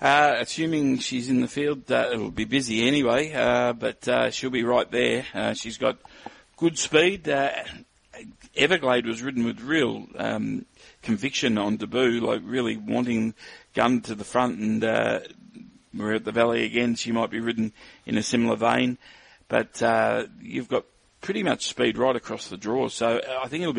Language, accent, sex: English, Australian, male